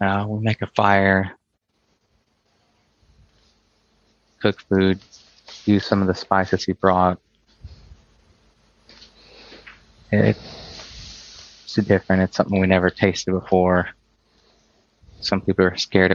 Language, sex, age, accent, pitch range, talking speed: English, male, 30-49, American, 90-100 Hz, 100 wpm